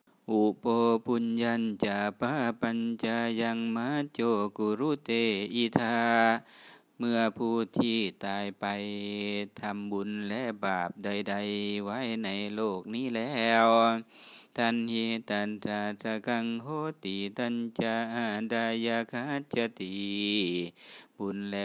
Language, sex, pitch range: Thai, male, 100-115 Hz